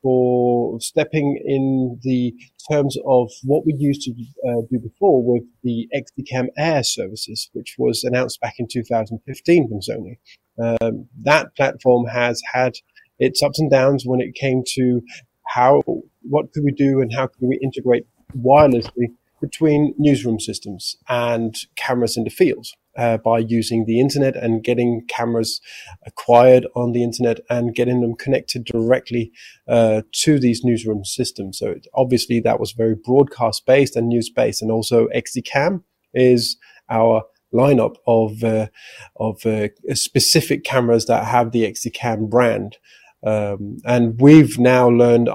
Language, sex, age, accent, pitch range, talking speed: English, male, 30-49, British, 115-130 Hz, 150 wpm